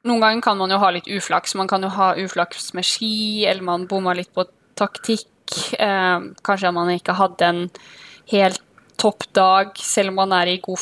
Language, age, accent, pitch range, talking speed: Swedish, 20-39, native, 185-210 Hz, 195 wpm